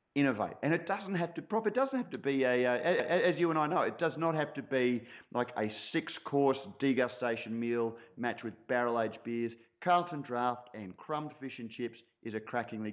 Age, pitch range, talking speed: 30-49, 115-145 Hz, 215 wpm